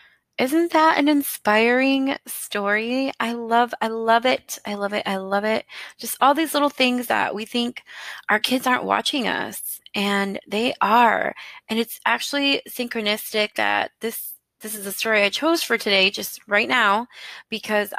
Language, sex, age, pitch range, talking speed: English, female, 20-39, 205-255 Hz, 165 wpm